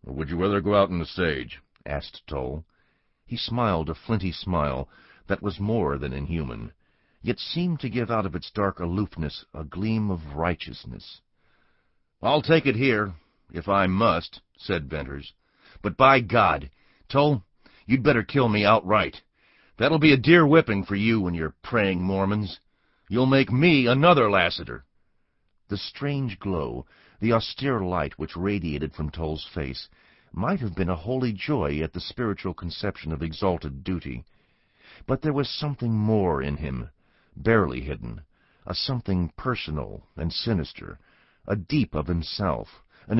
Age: 50-69